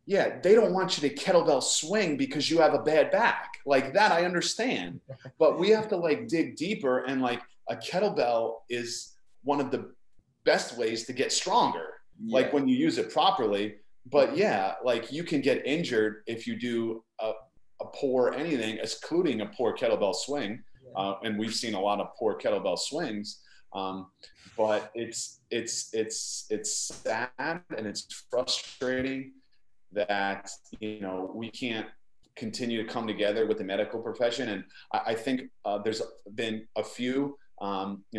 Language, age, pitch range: English, 30-49, 105-130 Hz